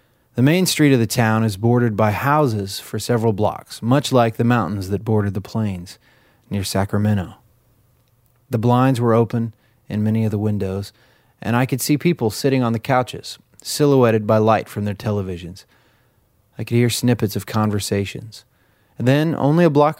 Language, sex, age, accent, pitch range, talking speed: English, male, 30-49, American, 105-125 Hz, 170 wpm